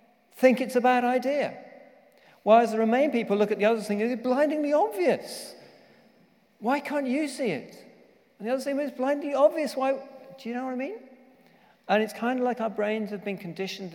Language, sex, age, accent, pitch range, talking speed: English, male, 40-59, British, 155-235 Hz, 200 wpm